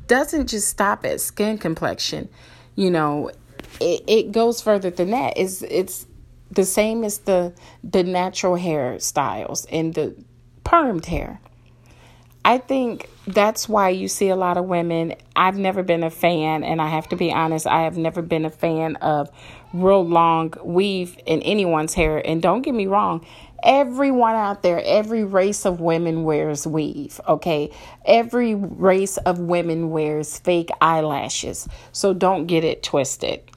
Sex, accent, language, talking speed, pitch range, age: female, American, English, 160 wpm, 155-200 Hz, 30-49